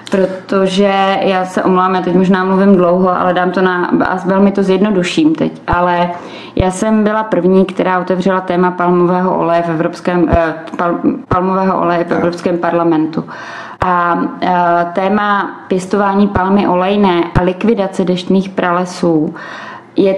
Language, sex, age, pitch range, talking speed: Czech, female, 20-39, 180-195 Hz, 140 wpm